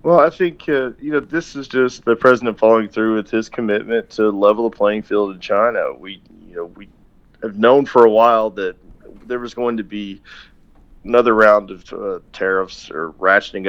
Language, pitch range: English, 95-125 Hz